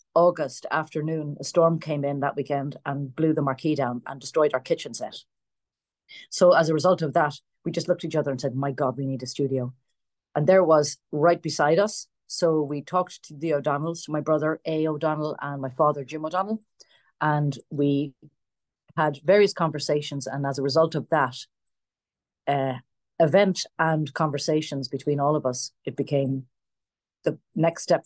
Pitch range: 140-170 Hz